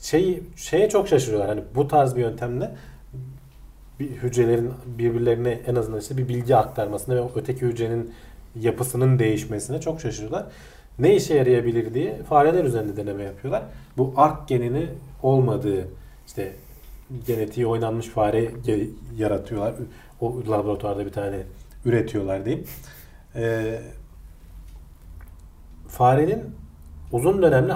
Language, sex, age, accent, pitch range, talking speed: Turkish, male, 40-59, native, 105-135 Hz, 110 wpm